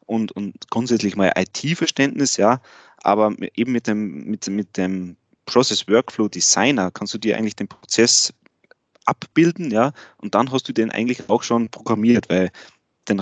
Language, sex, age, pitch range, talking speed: German, male, 30-49, 100-125 Hz, 150 wpm